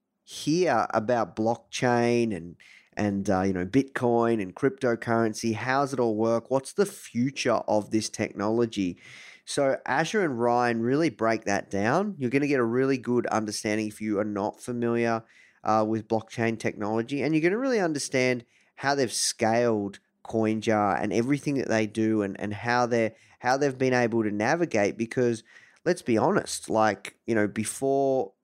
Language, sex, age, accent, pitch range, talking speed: English, male, 20-39, Australian, 105-125 Hz, 165 wpm